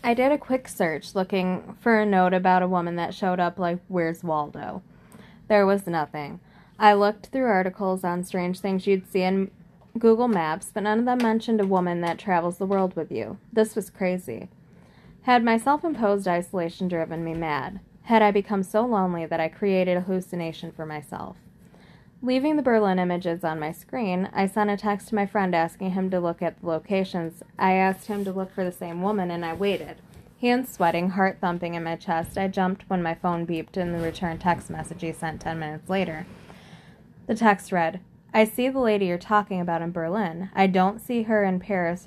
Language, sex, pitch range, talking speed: English, female, 170-210 Hz, 205 wpm